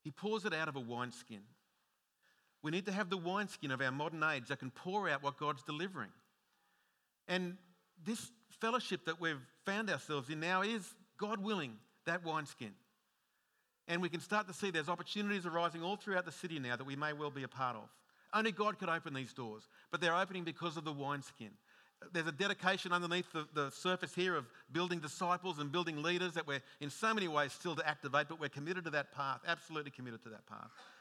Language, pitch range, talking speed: English, 145-185 Hz, 205 wpm